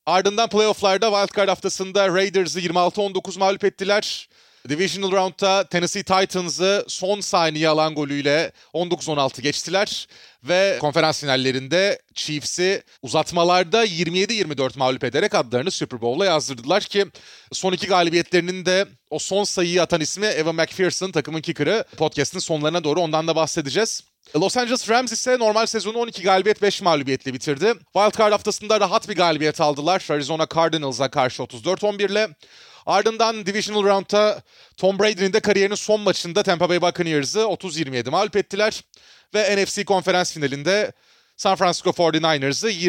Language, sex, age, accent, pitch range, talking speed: Turkish, male, 30-49, native, 160-205 Hz, 135 wpm